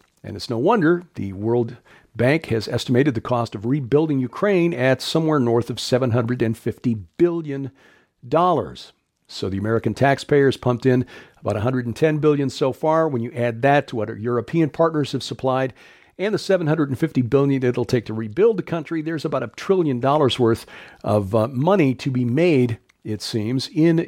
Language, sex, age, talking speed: English, male, 50-69, 165 wpm